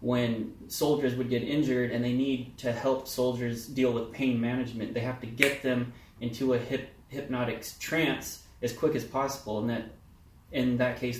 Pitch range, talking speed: 120-140 Hz, 175 wpm